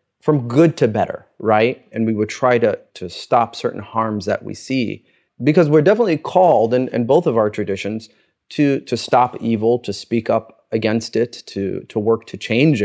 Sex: male